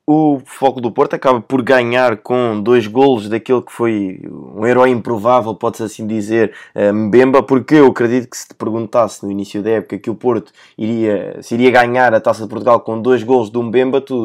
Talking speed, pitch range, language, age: 205 wpm, 115-135 Hz, Portuguese, 20-39